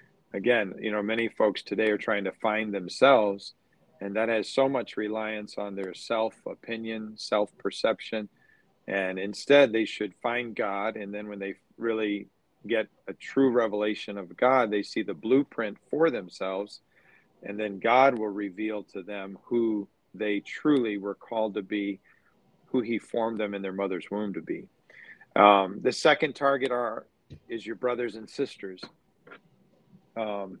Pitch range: 105-120 Hz